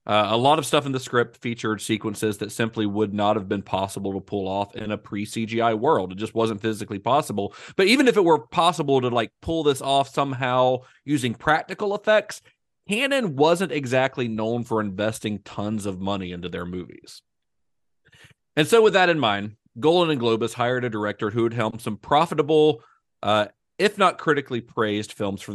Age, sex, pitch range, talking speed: 40-59, male, 105-145 Hz, 190 wpm